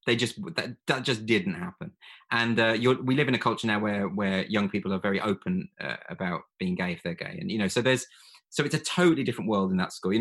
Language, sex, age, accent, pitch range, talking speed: English, male, 20-39, British, 105-165 Hz, 265 wpm